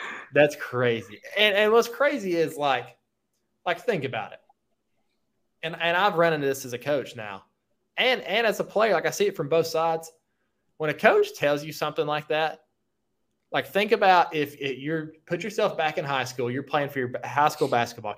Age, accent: 20-39, American